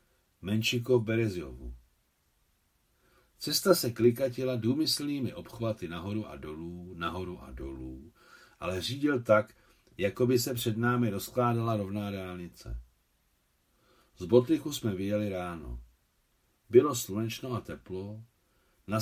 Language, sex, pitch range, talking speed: Czech, male, 90-125 Hz, 105 wpm